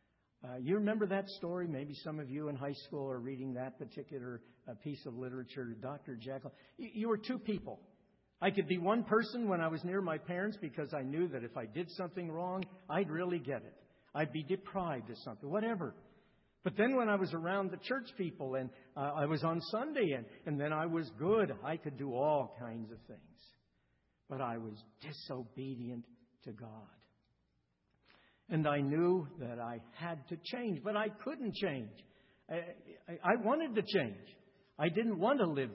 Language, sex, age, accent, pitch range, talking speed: English, male, 60-79, American, 130-190 Hz, 190 wpm